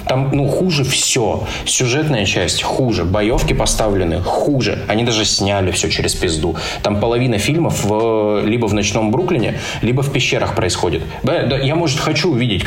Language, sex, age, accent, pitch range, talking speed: Russian, male, 20-39, native, 100-130 Hz, 160 wpm